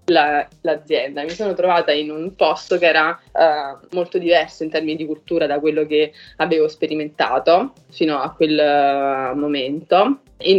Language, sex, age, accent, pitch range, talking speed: Italian, female, 20-39, native, 150-170 Hz, 140 wpm